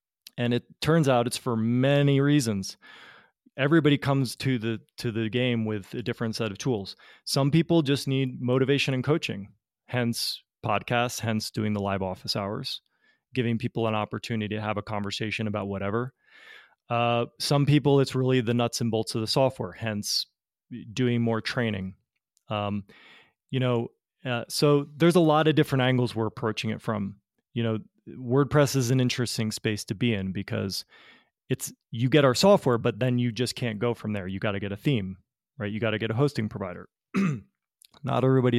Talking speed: 180 wpm